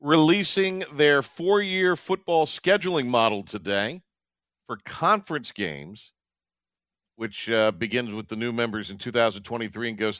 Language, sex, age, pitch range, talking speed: English, male, 50-69, 110-150 Hz, 125 wpm